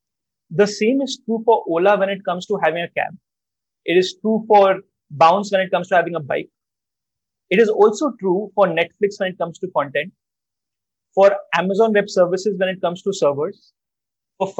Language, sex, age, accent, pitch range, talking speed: English, male, 30-49, Indian, 165-210 Hz, 190 wpm